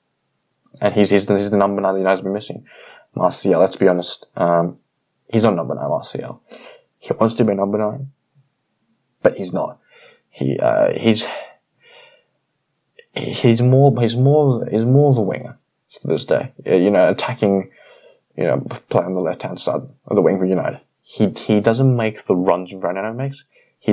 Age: 20-39